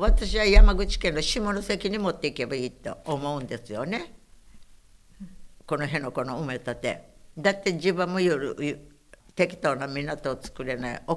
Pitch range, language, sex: 145-185 Hz, Japanese, female